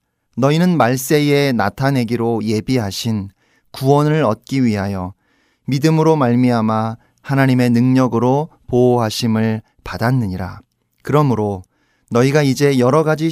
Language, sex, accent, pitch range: Korean, male, native, 110-140 Hz